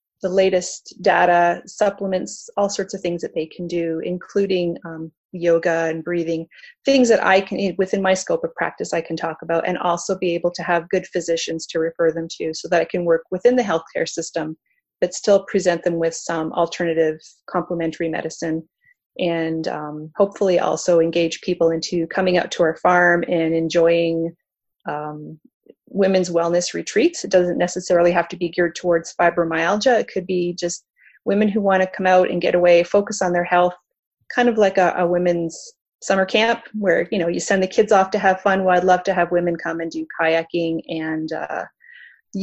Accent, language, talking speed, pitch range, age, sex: American, English, 190 wpm, 165-190 Hz, 30-49, female